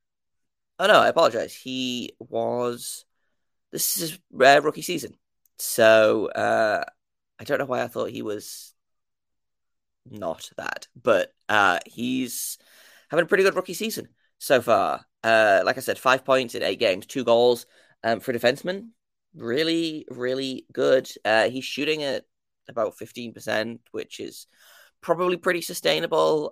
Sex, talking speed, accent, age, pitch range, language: male, 145 wpm, British, 20-39, 115-165 Hz, English